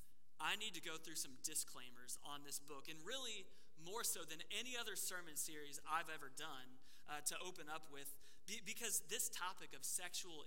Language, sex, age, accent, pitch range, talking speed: English, male, 30-49, American, 150-195 Hz, 185 wpm